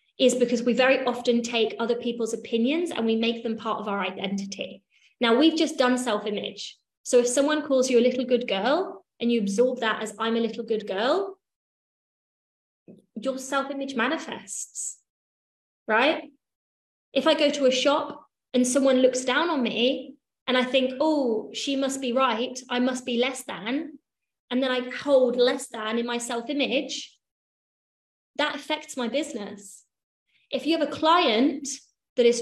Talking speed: 165 wpm